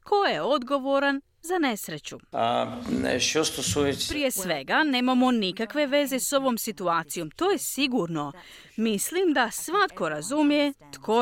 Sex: female